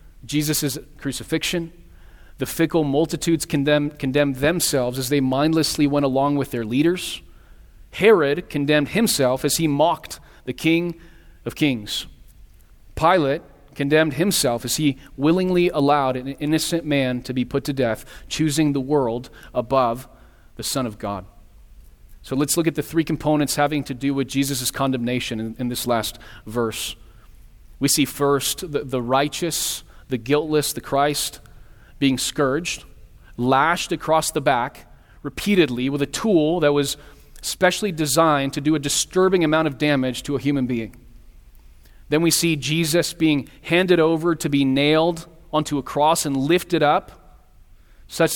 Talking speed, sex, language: 150 wpm, male, English